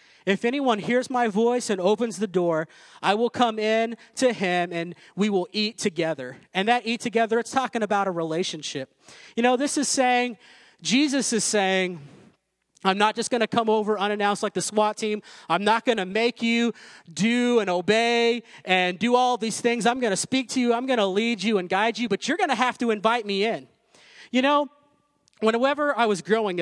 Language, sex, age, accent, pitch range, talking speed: English, male, 30-49, American, 195-235 Hz, 205 wpm